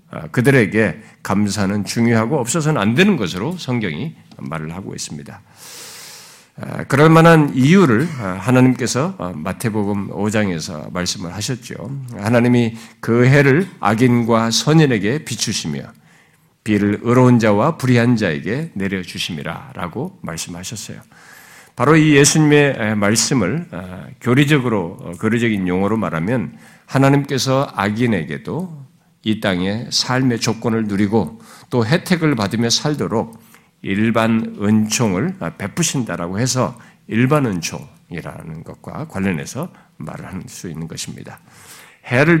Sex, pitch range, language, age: male, 105-145 Hz, Korean, 50-69